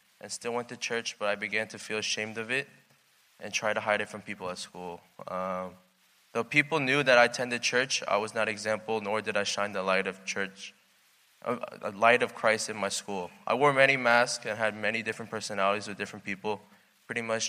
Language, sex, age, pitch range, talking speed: English, male, 20-39, 100-120 Hz, 215 wpm